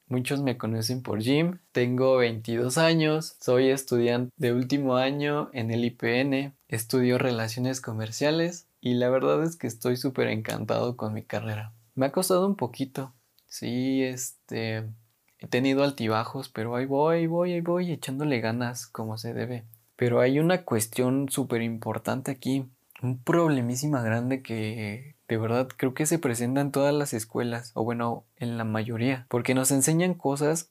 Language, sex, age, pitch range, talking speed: Spanish, male, 20-39, 115-135 Hz, 160 wpm